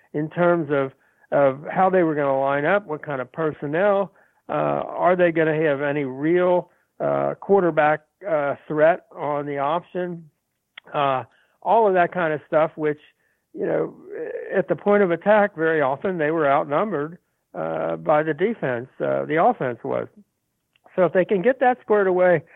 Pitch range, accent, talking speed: 140-175 Hz, American, 175 wpm